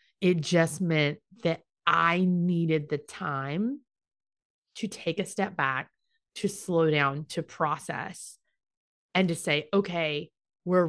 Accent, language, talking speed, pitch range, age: American, English, 125 wpm, 150-185 Hz, 30-49